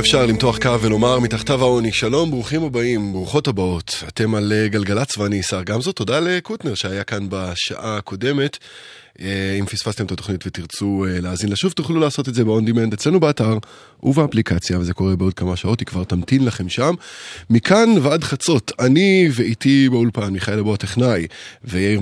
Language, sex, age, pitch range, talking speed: Hebrew, male, 20-39, 95-125 Hz, 160 wpm